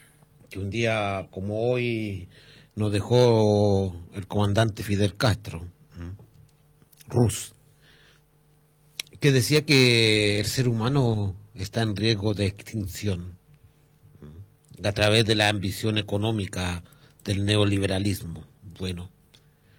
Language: Spanish